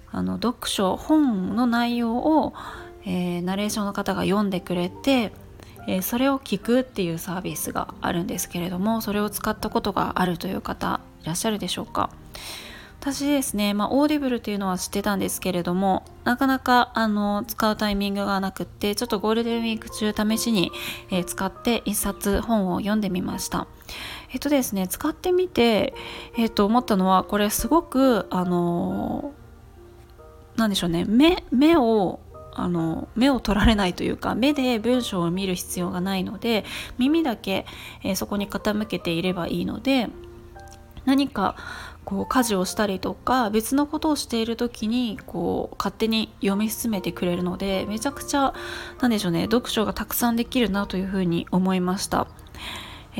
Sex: female